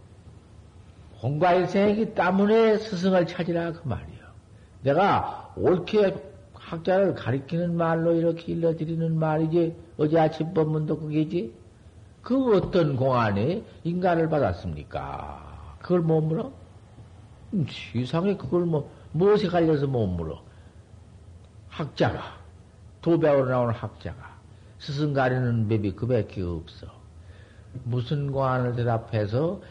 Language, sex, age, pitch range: Korean, male, 50-69, 105-170 Hz